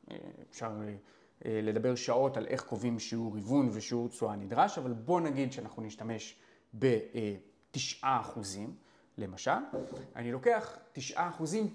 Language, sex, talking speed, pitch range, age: Hebrew, male, 115 wpm, 110-145 Hz, 30-49